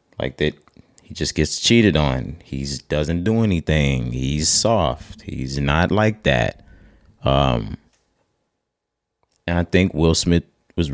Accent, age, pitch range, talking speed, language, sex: American, 30-49, 75-90 Hz, 130 wpm, English, male